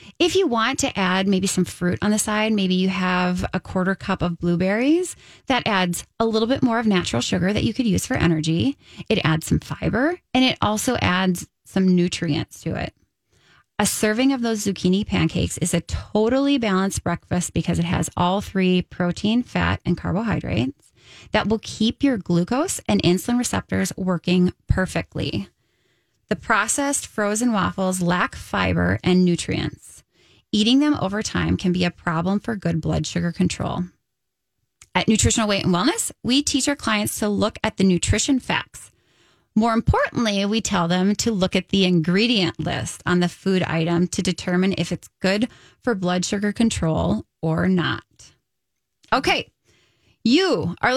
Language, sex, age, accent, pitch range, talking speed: English, female, 20-39, American, 175-230 Hz, 165 wpm